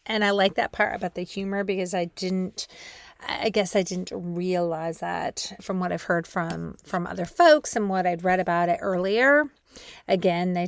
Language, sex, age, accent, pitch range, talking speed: English, female, 30-49, American, 175-235 Hz, 190 wpm